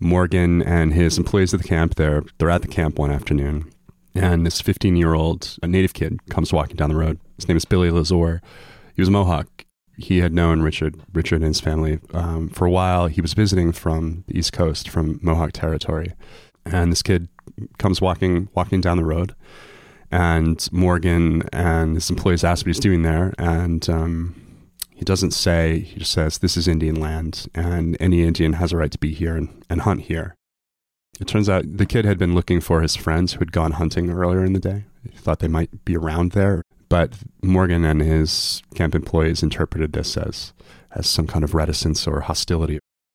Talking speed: 200 wpm